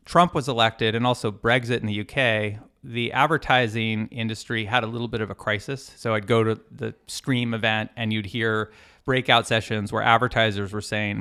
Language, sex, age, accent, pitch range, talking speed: English, male, 30-49, American, 115-145 Hz, 185 wpm